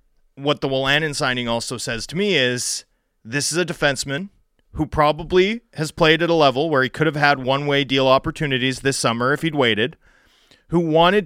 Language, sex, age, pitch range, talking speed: English, male, 30-49, 110-155 Hz, 185 wpm